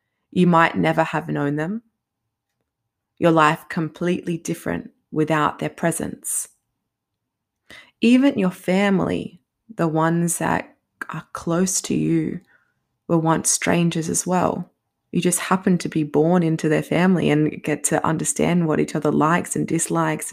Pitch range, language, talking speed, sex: 145-170 Hz, English, 140 wpm, female